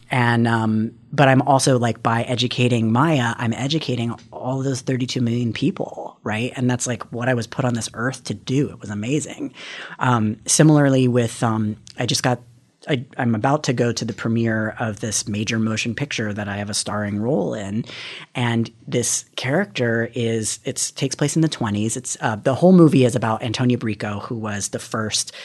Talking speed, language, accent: 195 wpm, English, American